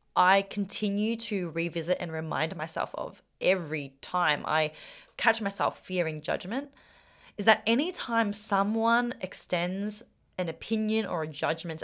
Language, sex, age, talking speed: English, female, 20-39, 125 wpm